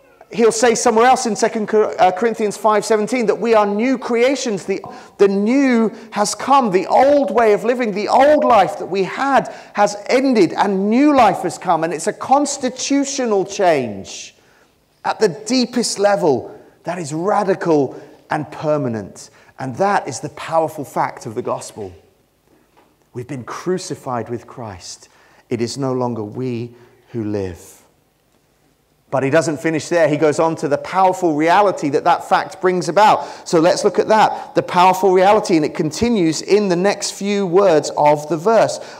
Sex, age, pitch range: male, 30-49, 160-220 Hz